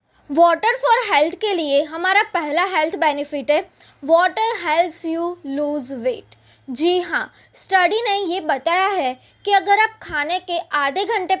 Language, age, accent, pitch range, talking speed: Hindi, 20-39, native, 305-385 Hz, 155 wpm